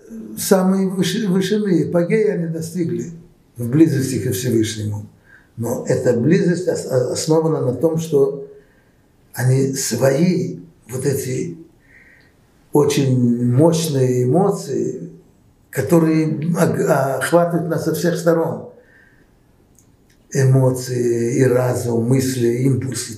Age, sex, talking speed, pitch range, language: 60-79, male, 90 wpm, 125-170 Hz, Russian